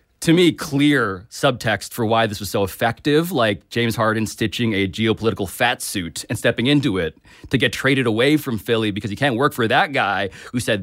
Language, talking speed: English, 205 wpm